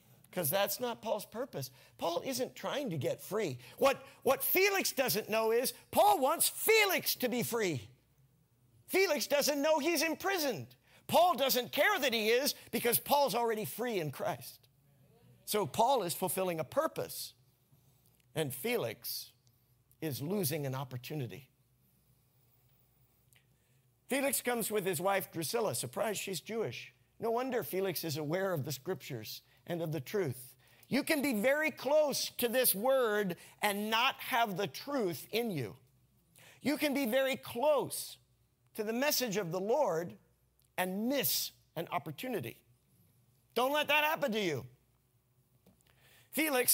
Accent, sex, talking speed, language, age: American, male, 140 wpm, English, 50-69